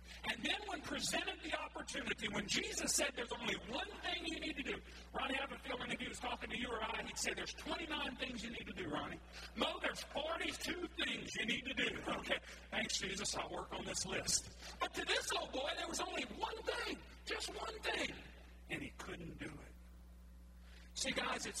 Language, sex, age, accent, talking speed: English, male, 50-69, American, 215 wpm